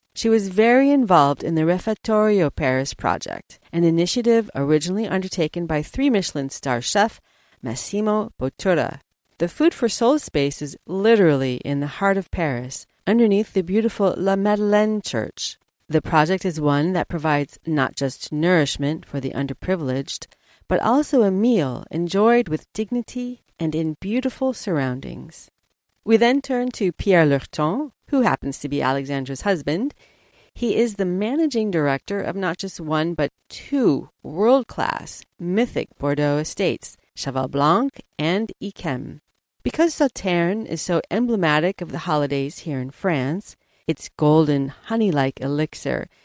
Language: English